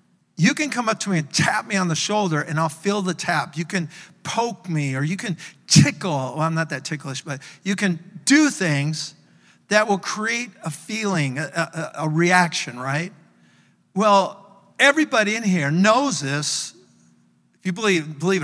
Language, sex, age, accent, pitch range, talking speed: English, male, 50-69, American, 145-195 Hz, 180 wpm